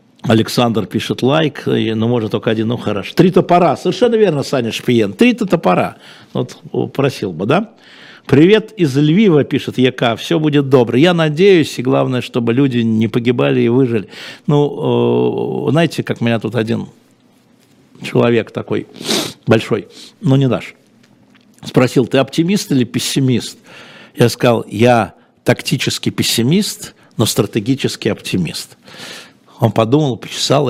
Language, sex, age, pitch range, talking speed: Russian, male, 60-79, 110-140 Hz, 135 wpm